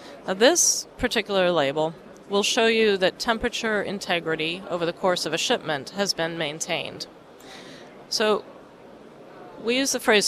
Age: 30-49